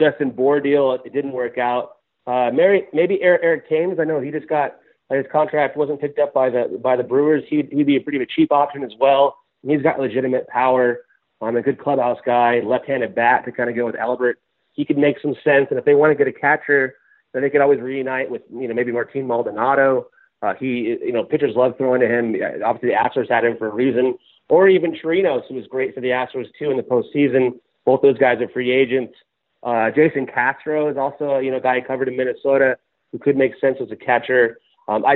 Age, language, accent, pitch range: 30-49, English, American, 125-155 Hz